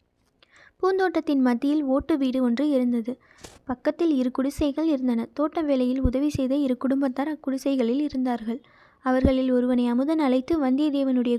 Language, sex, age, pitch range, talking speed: Tamil, female, 20-39, 255-305 Hz, 120 wpm